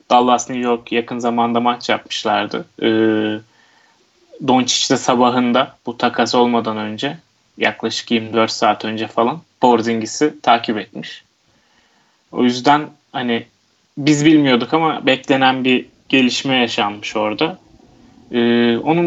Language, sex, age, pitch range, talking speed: Turkish, male, 30-49, 115-140 Hz, 105 wpm